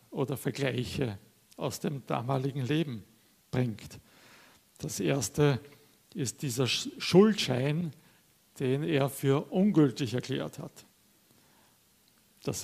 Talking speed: 90 wpm